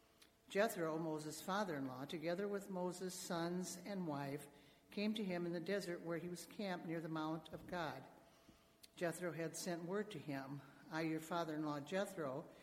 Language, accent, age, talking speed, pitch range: English, American, 60-79, 160 wpm, 155-185 Hz